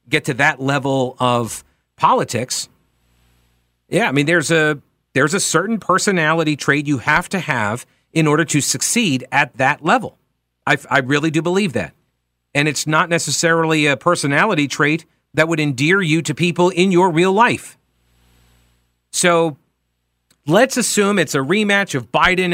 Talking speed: 155 wpm